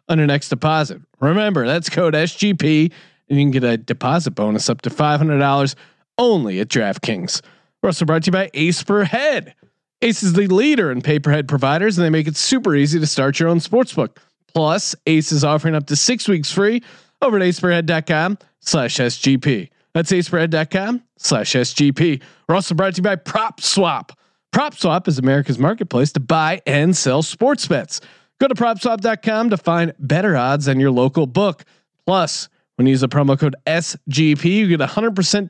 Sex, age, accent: male, 30-49, American